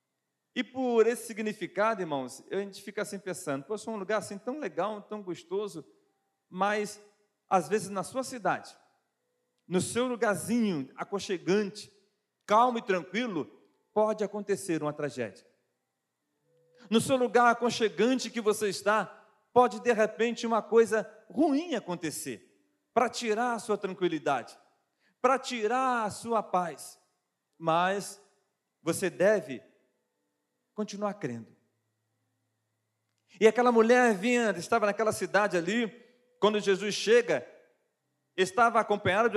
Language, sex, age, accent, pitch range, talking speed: Portuguese, male, 40-59, Brazilian, 185-235 Hz, 120 wpm